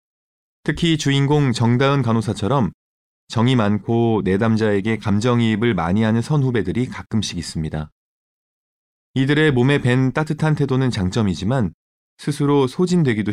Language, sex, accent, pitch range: Korean, male, native, 105-140 Hz